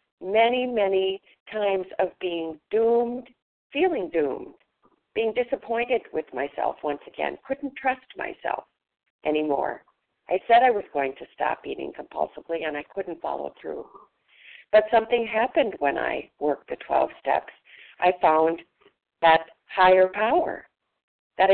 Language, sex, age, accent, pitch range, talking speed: English, female, 50-69, American, 175-255 Hz, 130 wpm